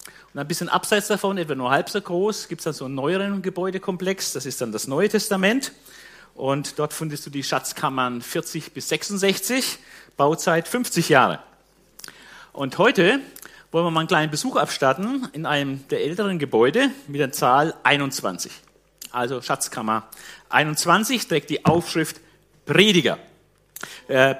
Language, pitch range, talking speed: German, 135-195 Hz, 150 wpm